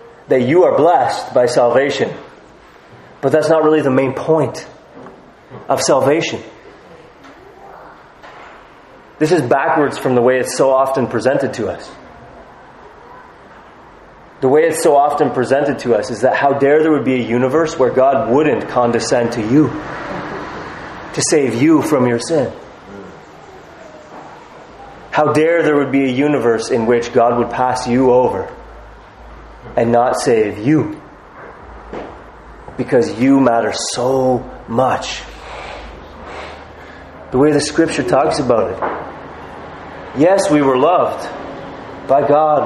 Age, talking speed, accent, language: 30-49, 130 wpm, American, English